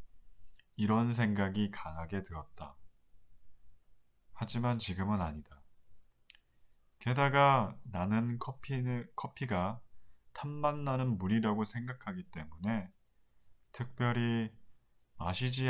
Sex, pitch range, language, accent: male, 90-120 Hz, Korean, native